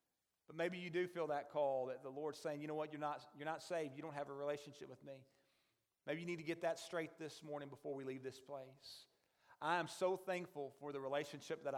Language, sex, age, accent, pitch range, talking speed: English, male, 40-59, American, 135-160 Hz, 240 wpm